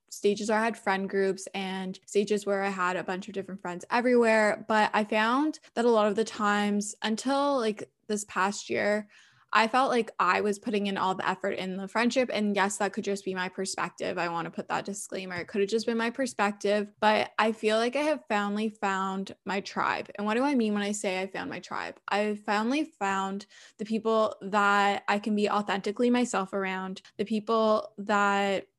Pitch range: 195-225 Hz